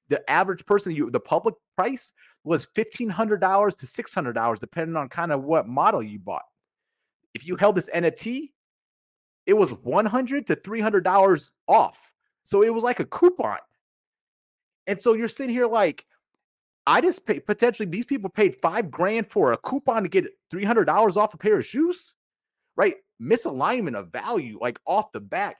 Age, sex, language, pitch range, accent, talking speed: 30-49, male, English, 165-250 Hz, American, 160 wpm